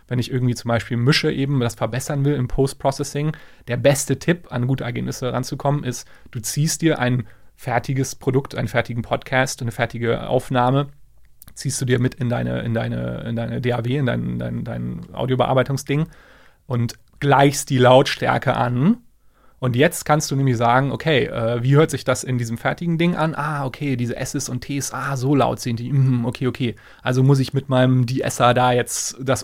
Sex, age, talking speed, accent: male, 30-49, 190 wpm, German